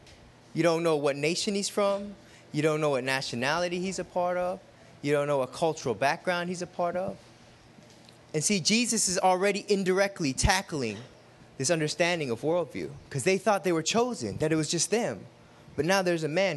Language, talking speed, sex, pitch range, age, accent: English, 190 wpm, male, 150-205 Hz, 20-39, American